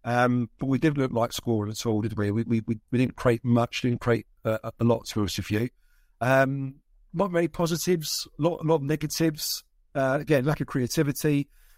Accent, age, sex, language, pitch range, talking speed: British, 50-69, male, English, 115-140 Hz, 205 wpm